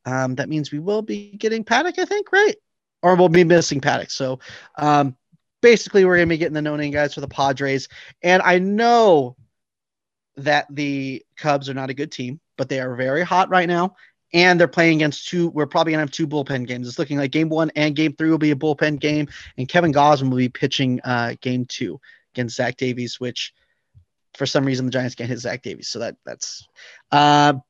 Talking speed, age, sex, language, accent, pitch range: 225 wpm, 30-49, male, English, American, 135-170 Hz